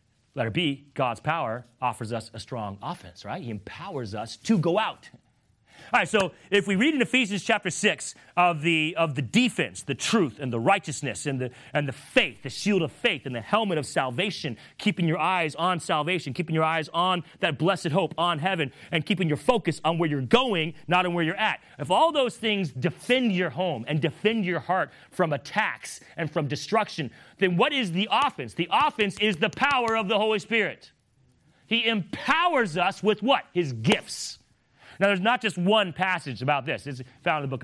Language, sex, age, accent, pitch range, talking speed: English, male, 30-49, American, 155-225 Hz, 200 wpm